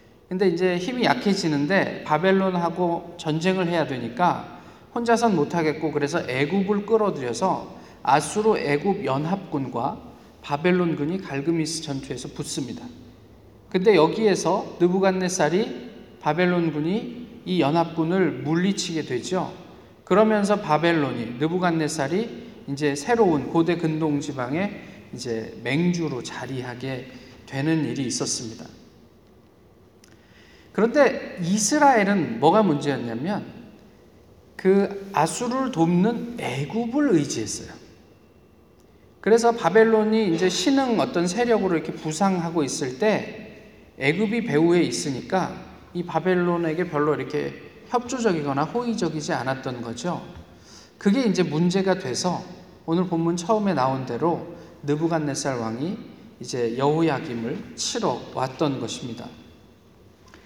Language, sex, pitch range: Korean, male, 145-200 Hz